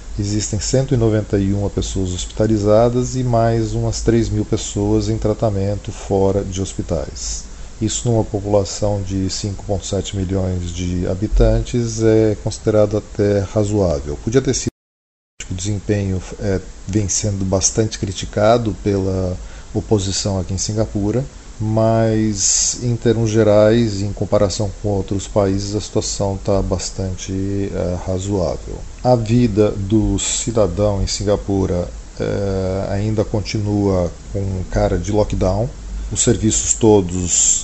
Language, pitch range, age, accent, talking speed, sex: Portuguese, 95-110 Hz, 40-59, Brazilian, 115 wpm, male